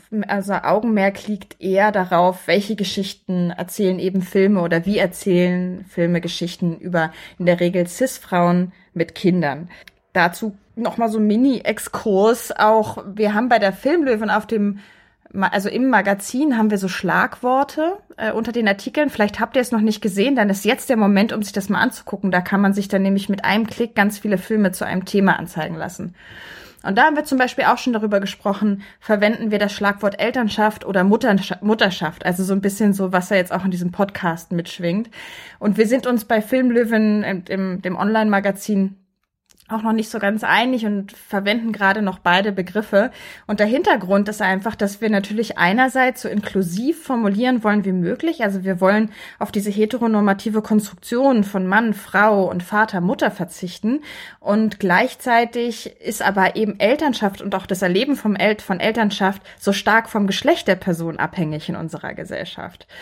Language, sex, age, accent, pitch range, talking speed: German, female, 20-39, German, 185-220 Hz, 175 wpm